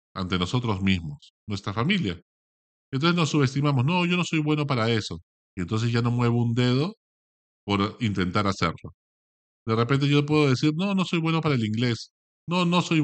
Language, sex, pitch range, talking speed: Spanish, male, 100-150 Hz, 185 wpm